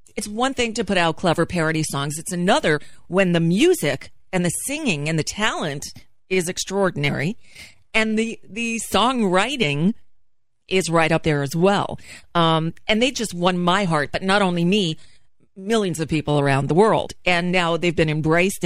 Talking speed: 175 wpm